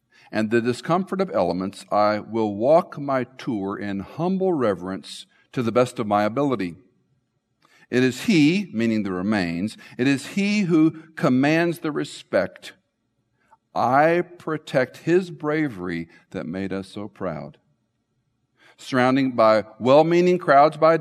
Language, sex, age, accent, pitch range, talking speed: English, male, 50-69, American, 105-150 Hz, 130 wpm